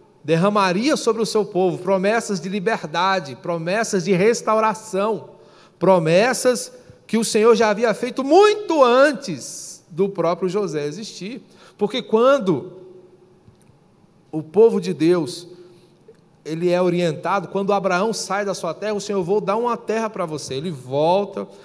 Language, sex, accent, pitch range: Portuguese, male, Brazilian, 150-200 Hz